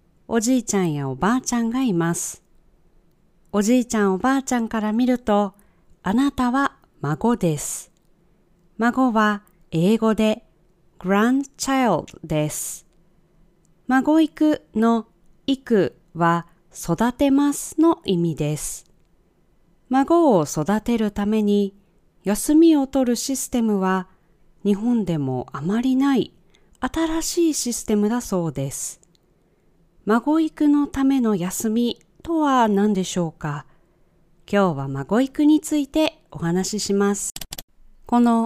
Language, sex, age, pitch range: Japanese, female, 40-59, 180-255 Hz